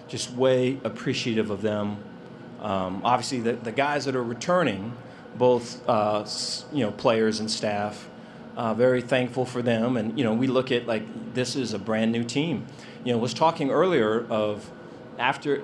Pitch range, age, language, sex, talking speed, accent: 110-125 Hz, 40-59, English, male, 175 wpm, American